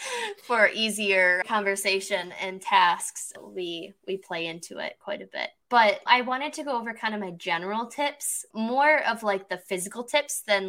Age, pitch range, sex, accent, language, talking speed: 10-29, 180-215 Hz, female, American, English, 175 wpm